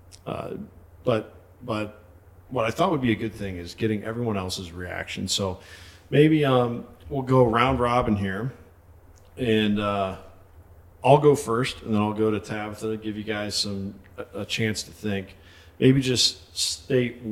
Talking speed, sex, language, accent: 165 wpm, male, English, American